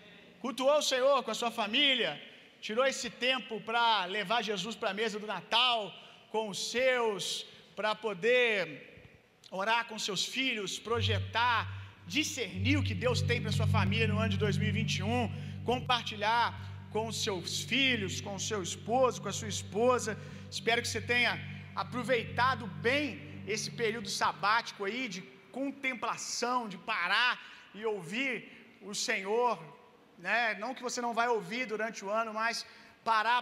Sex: male